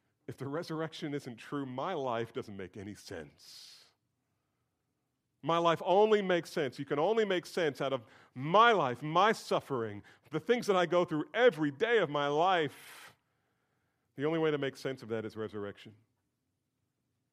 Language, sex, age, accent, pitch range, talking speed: English, male, 40-59, American, 115-165 Hz, 165 wpm